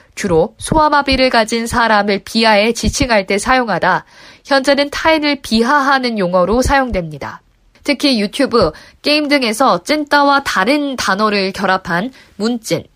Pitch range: 195-270 Hz